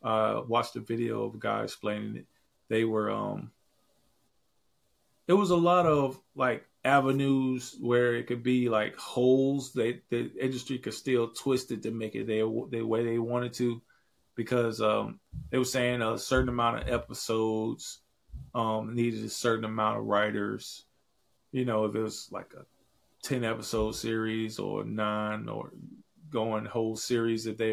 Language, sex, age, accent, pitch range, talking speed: English, male, 30-49, American, 110-125 Hz, 165 wpm